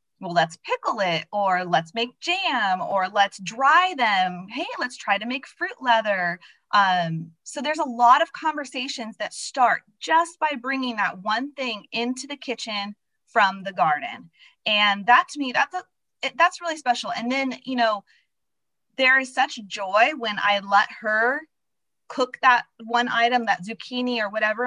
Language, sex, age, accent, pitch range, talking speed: English, female, 20-39, American, 190-250 Hz, 165 wpm